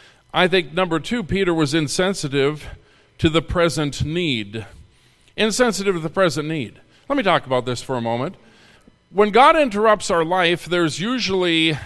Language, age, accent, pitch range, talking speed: English, 50-69, American, 150-220 Hz, 155 wpm